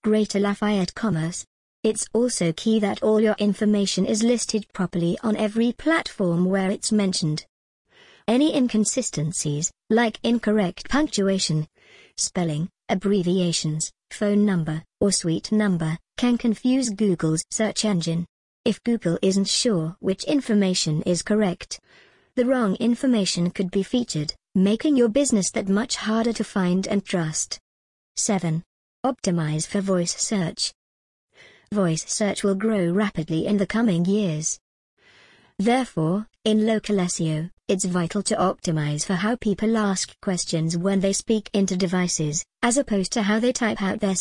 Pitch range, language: 175-220 Hz, English